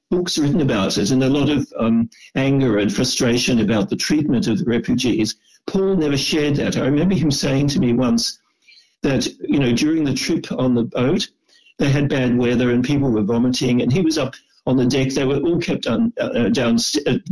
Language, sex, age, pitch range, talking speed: Hebrew, male, 60-79, 125-175 Hz, 210 wpm